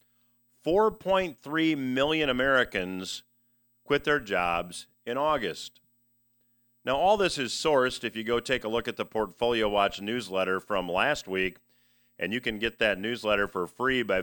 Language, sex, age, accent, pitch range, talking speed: English, male, 40-59, American, 110-130 Hz, 150 wpm